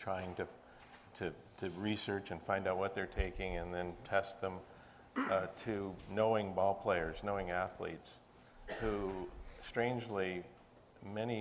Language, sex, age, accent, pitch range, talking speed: English, male, 50-69, American, 90-105 Hz, 130 wpm